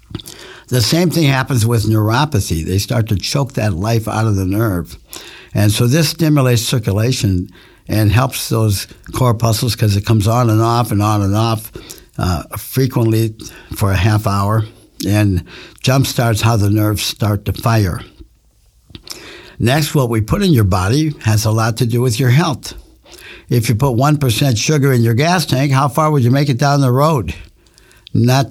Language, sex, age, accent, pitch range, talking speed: English, male, 60-79, American, 105-135 Hz, 175 wpm